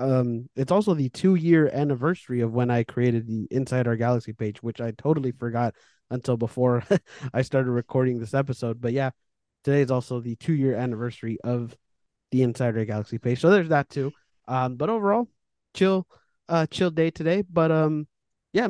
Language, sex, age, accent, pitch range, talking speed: English, male, 20-39, American, 120-150 Hz, 170 wpm